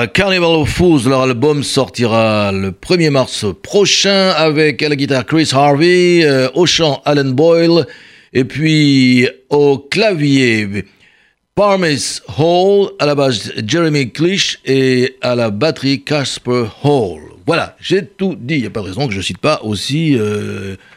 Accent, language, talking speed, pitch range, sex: French, French, 155 wpm, 115-160 Hz, male